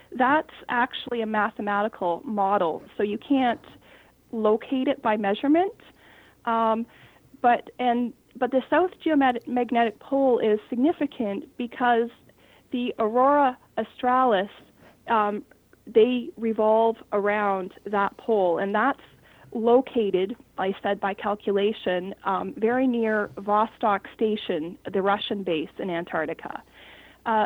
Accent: American